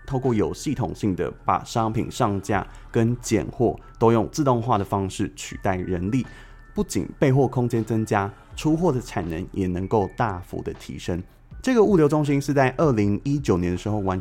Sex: male